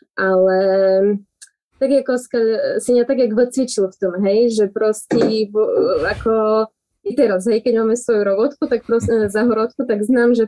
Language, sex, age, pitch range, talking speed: Slovak, female, 20-39, 195-230 Hz, 145 wpm